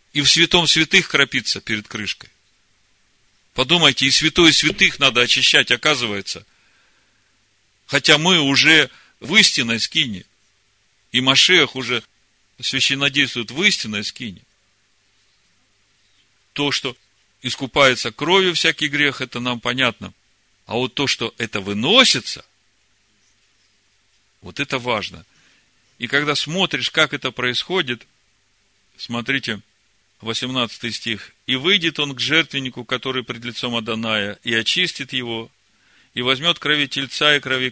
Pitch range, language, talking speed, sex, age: 105-140 Hz, Russian, 115 wpm, male, 40-59